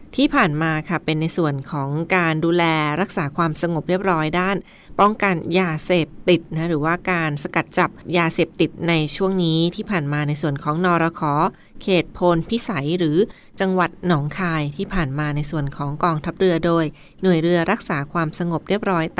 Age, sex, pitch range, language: 20-39, female, 160-190 Hz, Thai